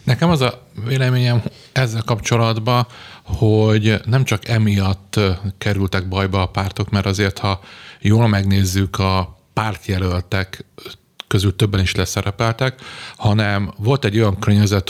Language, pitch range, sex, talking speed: Hungarian, 95-115 Hz, male, 120 wpm